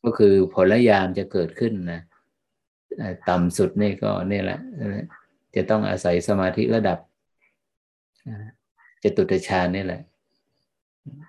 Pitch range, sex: 90-105 Hz, male